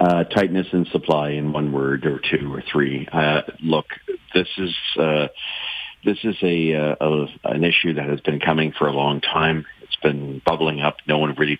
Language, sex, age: English, male, 50-69